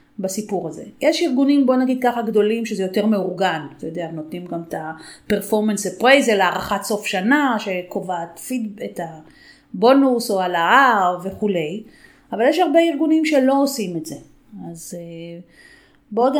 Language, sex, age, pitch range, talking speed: Hebrew, female, 30-49, 195-245 Hz, 140 wpm